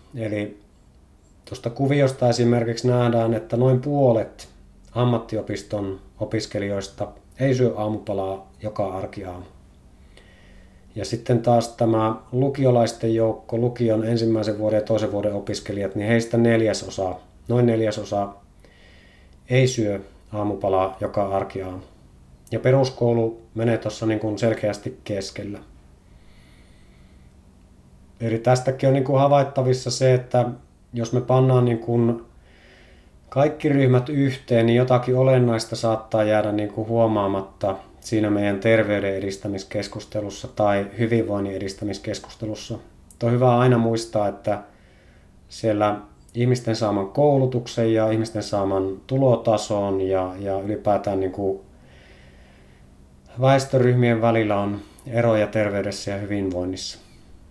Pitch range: 95-115 Hz